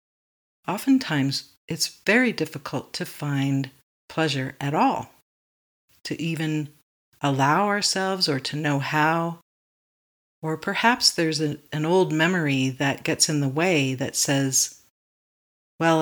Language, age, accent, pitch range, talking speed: English, 50-69, American, 130-160 Hz, 115 wpm